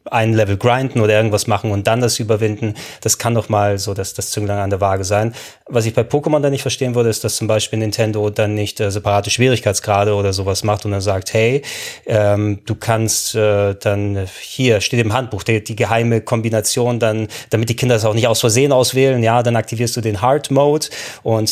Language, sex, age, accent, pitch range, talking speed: German, male, 30-49, German, 105-120 Hz, 220 wpm